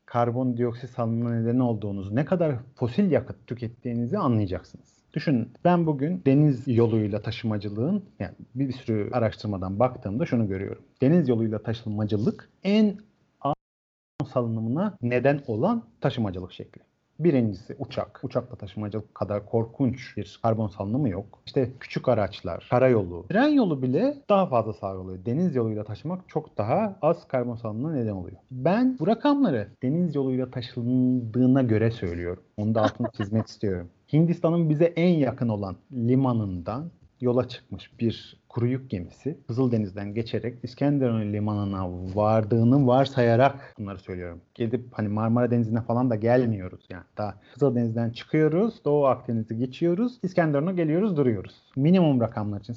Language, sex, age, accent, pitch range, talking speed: Turkish, male, 50-69, native, 110-145 Hz, 130 wpm